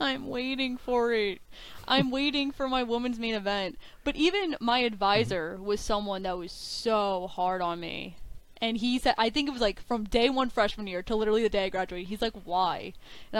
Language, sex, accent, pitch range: English, female, American, 205-250 Hz